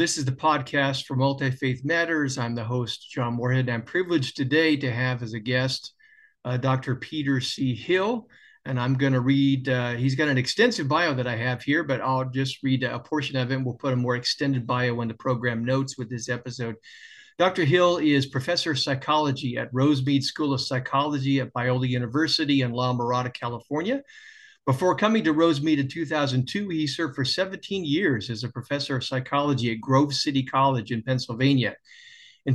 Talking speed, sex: 190 wpm, male